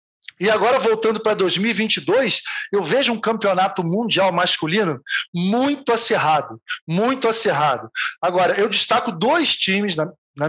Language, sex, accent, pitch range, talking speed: Portuguese, male, Brazilian, 175-240 Hz, 125 wpm